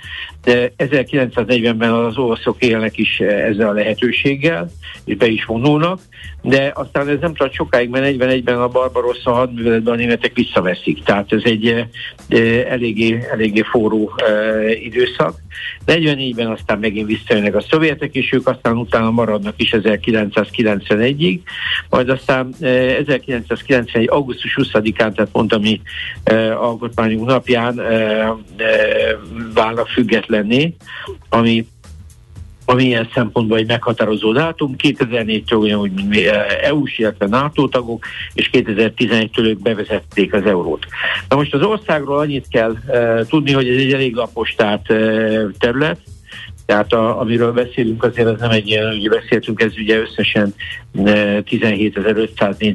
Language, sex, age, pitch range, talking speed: Hungarian, male, 60-79, 110-125 Hz, 130 wpm